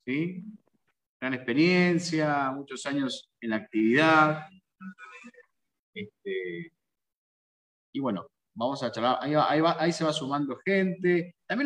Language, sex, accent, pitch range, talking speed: Spanish, male, Argentinian, 125-185 Hz, 125 wpm